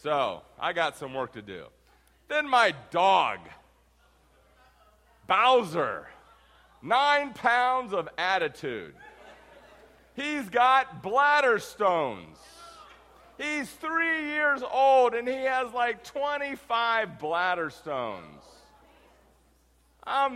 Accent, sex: American, male